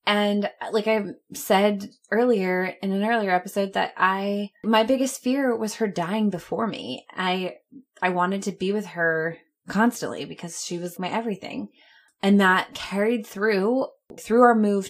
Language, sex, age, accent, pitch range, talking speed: English, female, 20-39, American, 170-225 Hz, 155 wpm